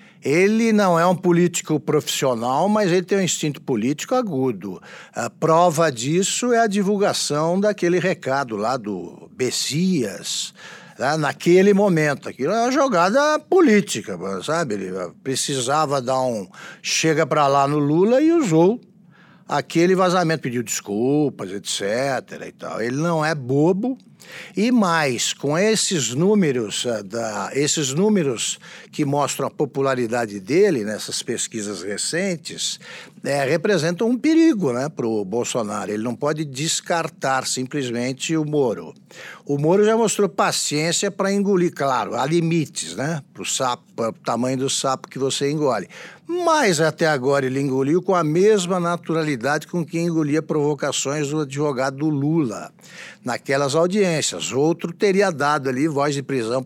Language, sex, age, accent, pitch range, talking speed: Portuguese, male, 60-79, Brazilian, 140-185 Hz, 130 wpm